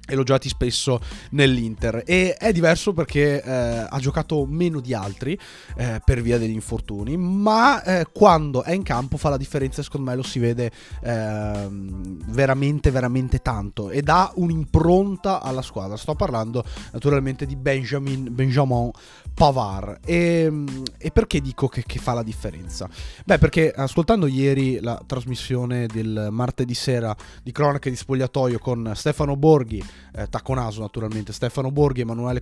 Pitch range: 115-150 Hz